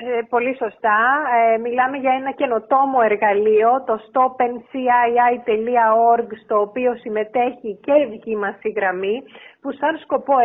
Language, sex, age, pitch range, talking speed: Greek, female, 30-49, 220-275 Hz, 130 wpm